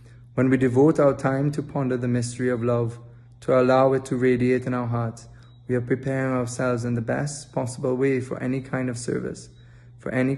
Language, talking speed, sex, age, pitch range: English, 200 wpm, male, 20-39, 120-130 Hz